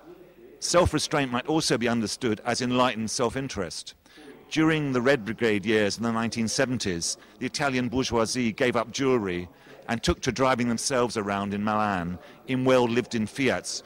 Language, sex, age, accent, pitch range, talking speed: Italian, male, 40-59, British, 110-130 Hz, 145 wpm